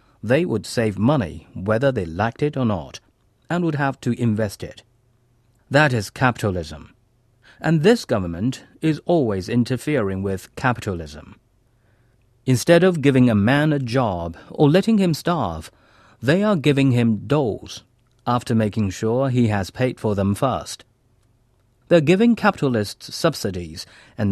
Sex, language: male, Chinese